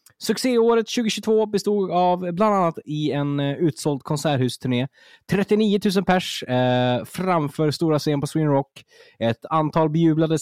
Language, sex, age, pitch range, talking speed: Swedish, male, 20-39, 115-180 Hz, 125 wpm